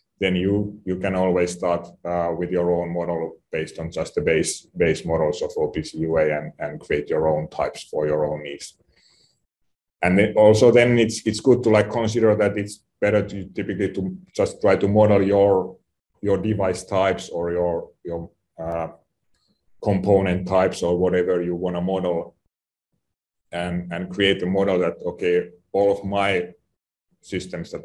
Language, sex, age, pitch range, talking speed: English, male, 30-49, 85-105 Hz, 170 wpm